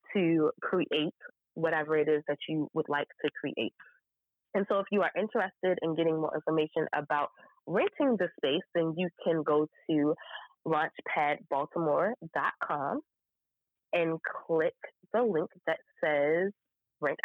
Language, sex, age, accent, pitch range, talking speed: English, female, 20-39, American, 150-180 Hz, 130 wpm